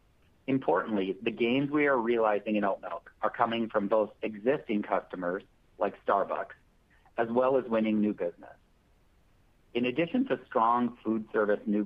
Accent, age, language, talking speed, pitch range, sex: American, 50-69, English, 150 wpm, 105-125 Hz, male